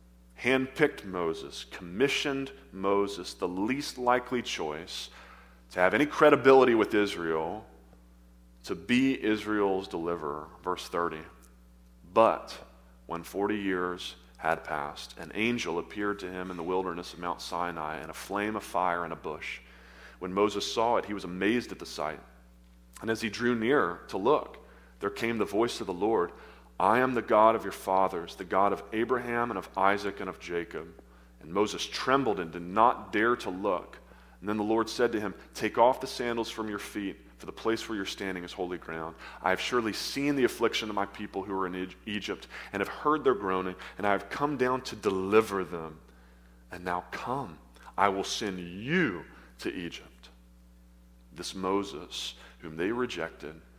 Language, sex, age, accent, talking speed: English, male, 30-49, American, 175 wpm